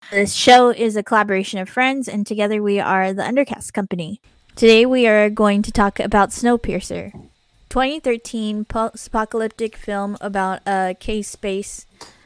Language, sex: English, female